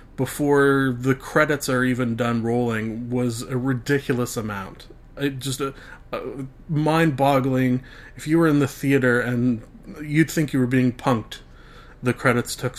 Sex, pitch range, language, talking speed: male, 115-140 Hz, English, 145 wpm